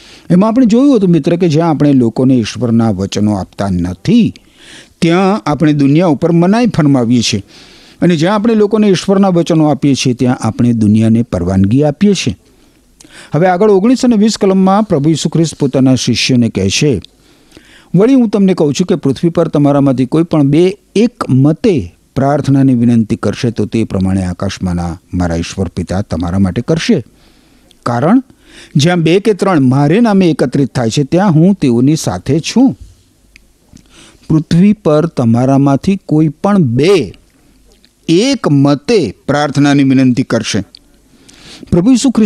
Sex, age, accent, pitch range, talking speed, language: male, 50-69, native, 125-190 Hz, 110 wpm, Gujarati